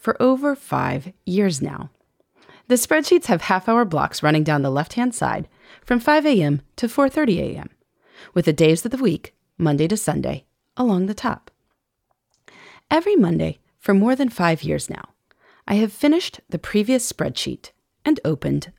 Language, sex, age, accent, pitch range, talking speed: English, female, 30-49, American, 165-270 Hz, 155 wpm